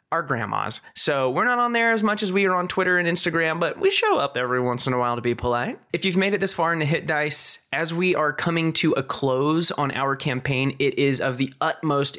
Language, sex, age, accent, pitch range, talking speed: English, male, 20-39, American, 130-180 Hz, 260 wpm